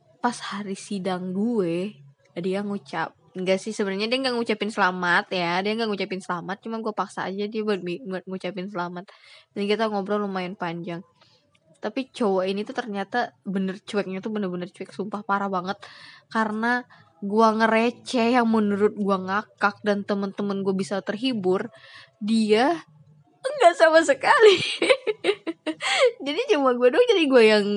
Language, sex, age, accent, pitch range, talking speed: English, female, 20-39, Indonesian, 190-250 Hz, 145 wpm